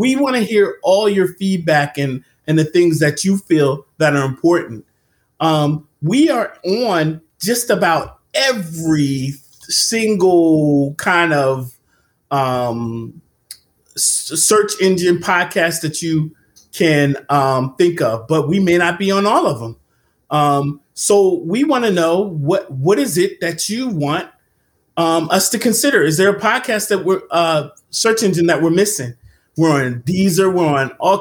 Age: 30-49